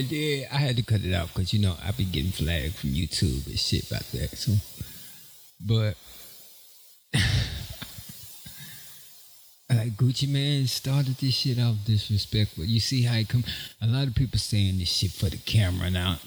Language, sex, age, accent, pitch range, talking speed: English, male, 20-39, American, 95-120 Hz, 175 wpm